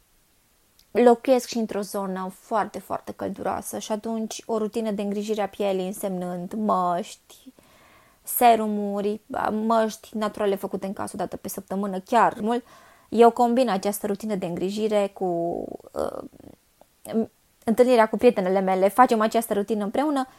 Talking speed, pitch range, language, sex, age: 130 wpm, 195-245 Hz, Romanian, female, 20-39